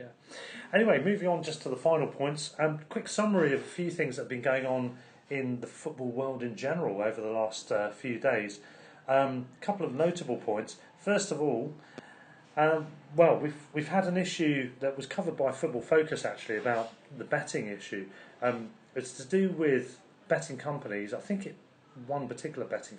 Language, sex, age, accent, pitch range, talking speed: English, male, 40-59, British, 120-155 Hz, 195 wpm